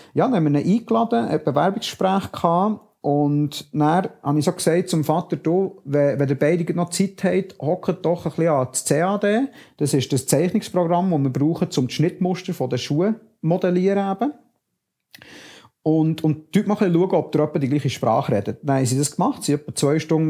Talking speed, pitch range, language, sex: 185 wpm, 140-180 Hz, German, male